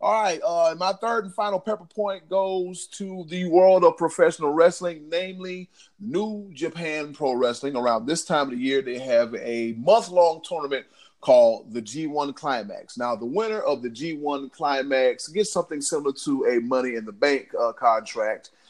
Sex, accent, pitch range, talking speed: male, American, 130-185 Hz, 175 wpm